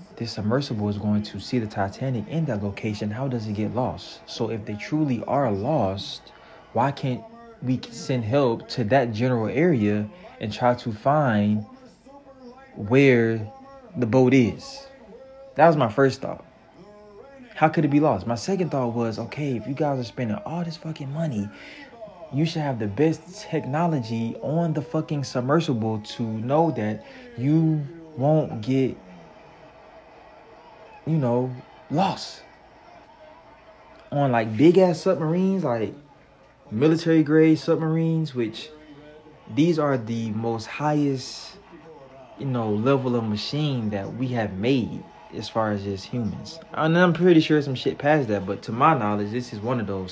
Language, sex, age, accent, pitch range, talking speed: English, male, 20-39, American, 110-155 Hz, 155 wpm